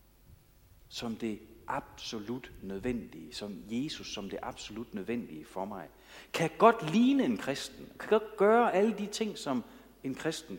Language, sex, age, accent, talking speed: Danish, male, 60-79, native, 145 wpm